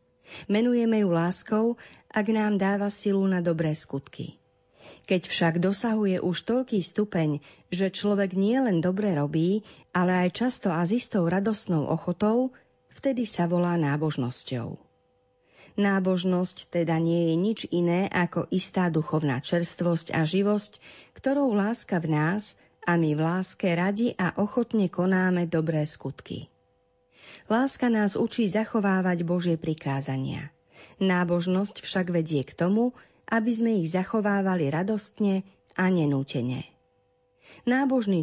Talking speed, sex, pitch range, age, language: 125 wpm, female, 165-210 Hz, 40-59, Slovak